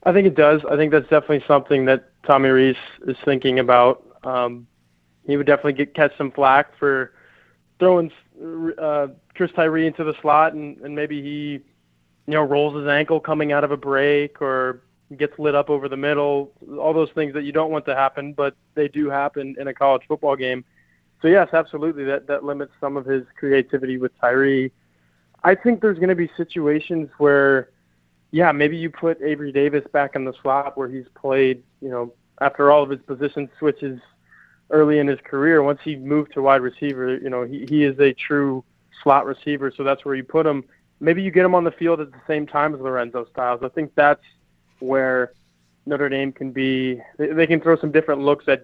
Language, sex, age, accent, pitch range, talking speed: English, male, 20-39, American, 130-150 Hz, 205 wpm